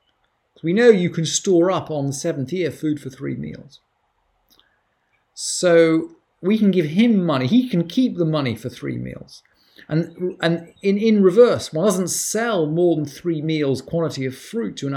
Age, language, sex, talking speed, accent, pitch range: 40-59, English, male, 180 wpm, British, 140-180 Hz